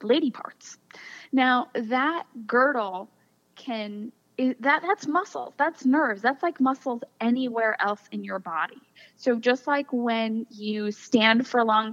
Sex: female